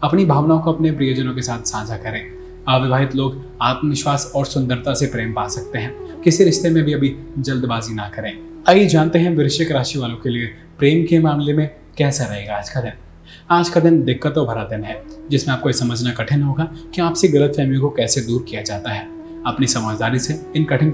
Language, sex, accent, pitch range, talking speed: Hindi, male, native, 115-155 Hz, 90 wpm